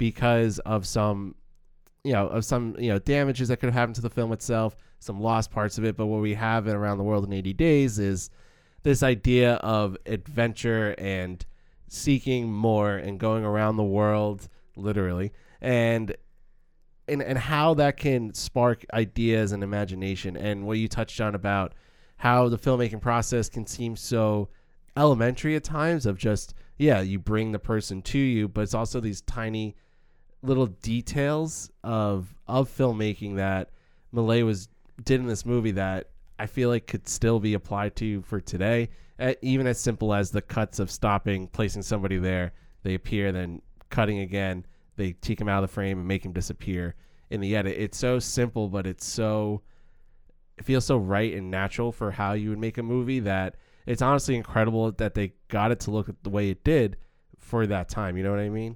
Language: English